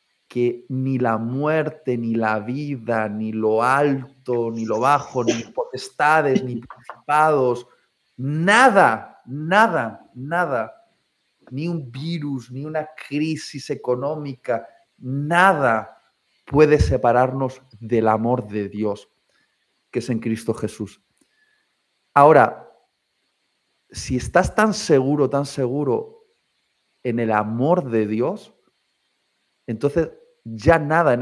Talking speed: 105 wpm